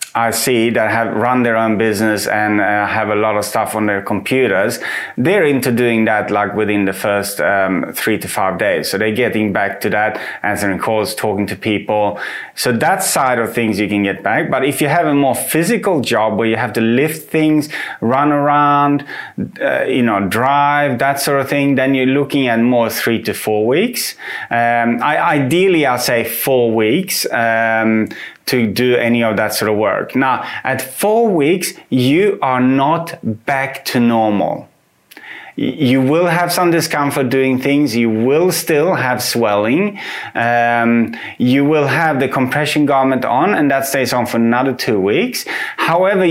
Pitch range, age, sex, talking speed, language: 115-145 Hz, 30-49, male, 180 wpm, English